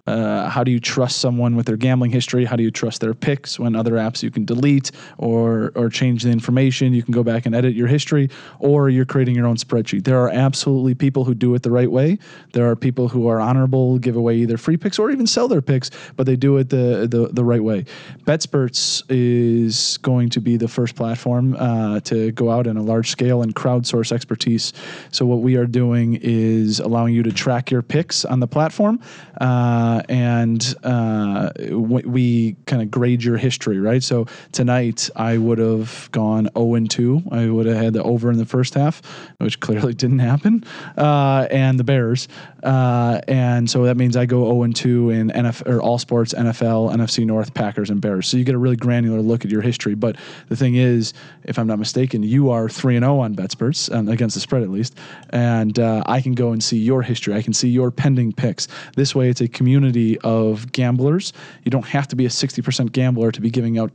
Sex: male